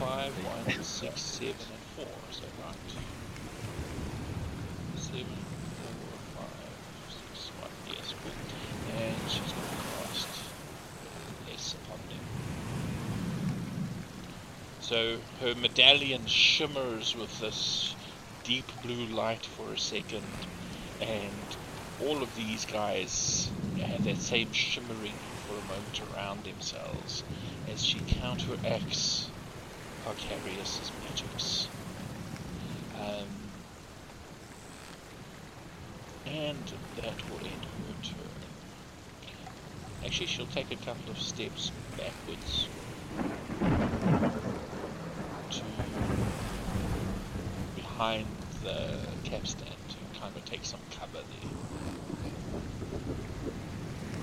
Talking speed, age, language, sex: 90 wpm, 50-69, English, male